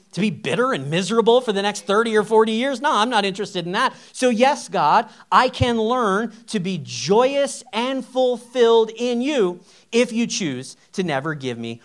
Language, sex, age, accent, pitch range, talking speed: English, male, 40-59, American, 200-260 Hz, 195 wpm